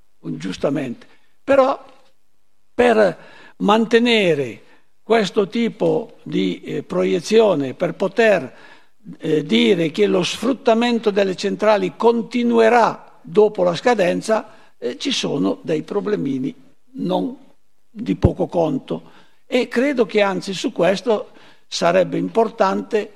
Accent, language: native, Italian